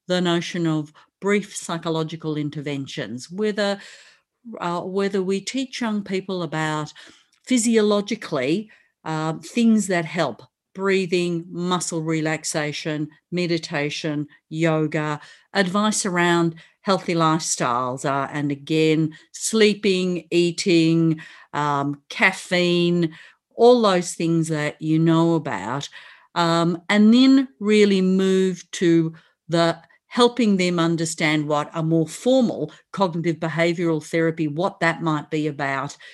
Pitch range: 155-195 Hz